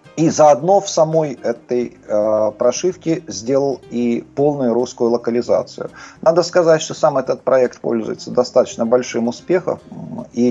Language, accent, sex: Russian, native, male